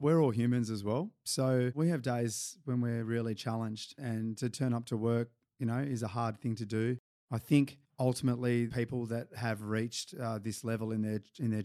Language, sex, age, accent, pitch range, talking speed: English, male, 30-49, Australian, 105-115 Hz, 210 wpm